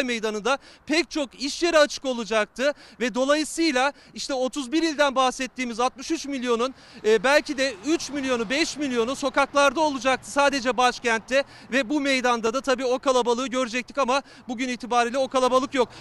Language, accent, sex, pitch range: Turkish, native, male, 245-285 Hz